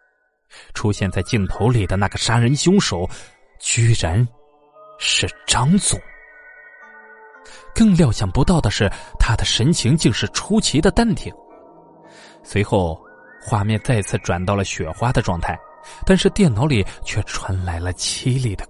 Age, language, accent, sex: 20-39, Chinese, native, male